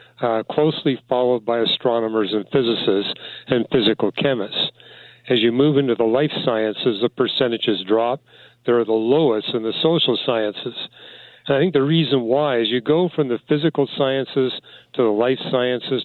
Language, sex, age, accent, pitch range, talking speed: English, male, 40-59, American, 110-140 Hz, 165 wpm